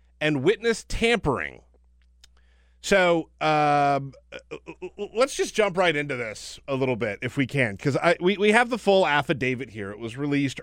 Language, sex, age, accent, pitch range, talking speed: English, male, 40-59, American, 110-175 Hz, 165 wpm